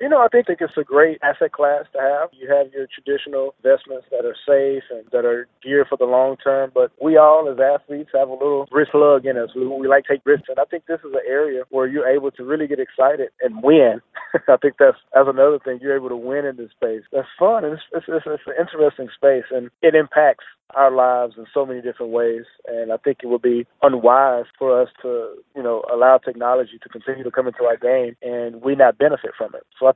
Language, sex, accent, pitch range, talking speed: English, male, American, 125-145 Hz, 250 wpm